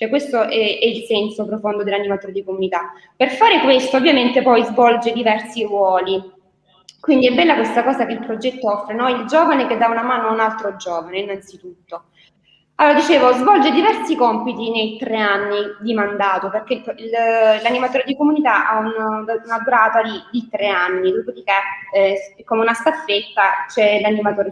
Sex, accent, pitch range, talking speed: female, native, 205-260 Hz, 160 wpm